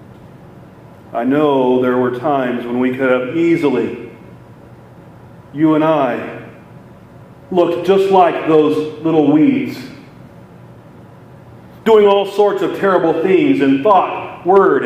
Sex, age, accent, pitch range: male, 40-59, American, 135-165 Hz